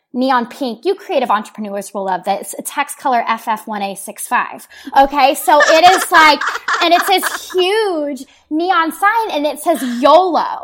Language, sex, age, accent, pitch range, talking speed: English, female, 20-39, American, 235-335 Hz, 160 wpm